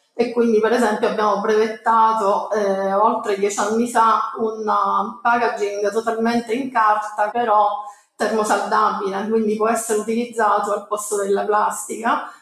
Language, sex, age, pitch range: Italian, female, 30-49, 210-225 Hz